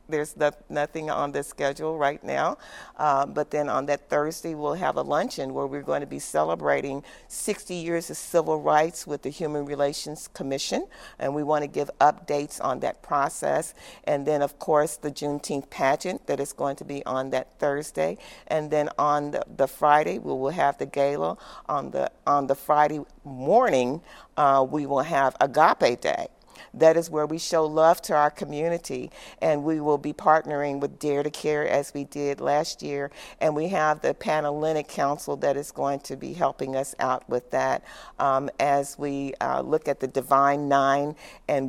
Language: English